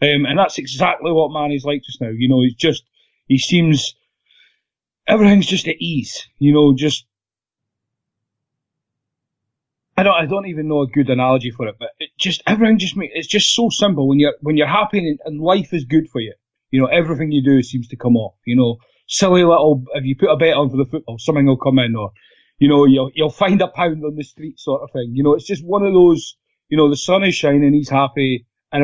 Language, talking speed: English, 230 wpm